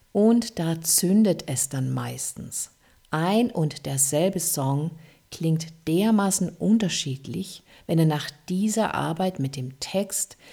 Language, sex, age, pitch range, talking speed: German, female, 50-69, 150-195 Hz, 120 wpm